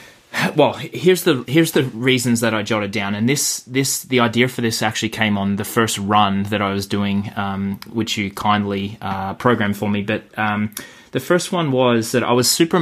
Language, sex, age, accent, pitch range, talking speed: English, male, 20-39, Australian, 100-120 Hz, 210 wpm